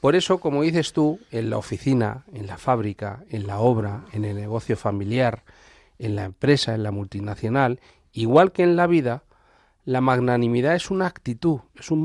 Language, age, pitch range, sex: Spanish, 40-59, 110-150 Hz, male